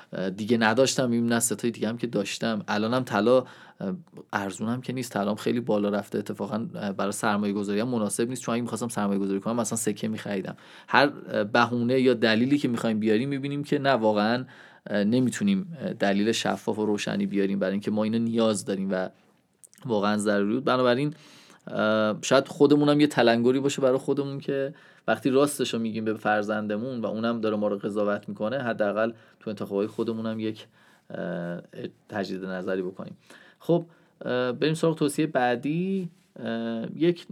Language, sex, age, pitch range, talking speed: Persian, male, 30-49, 105-140 Hz, 150 wpm